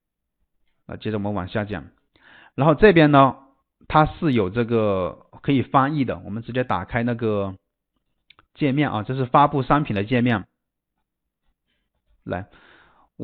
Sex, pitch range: male, 110-145 Hz